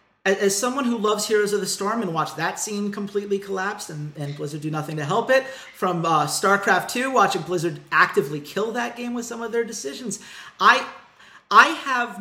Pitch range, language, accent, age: 155-210 Hz, English, American, 40-59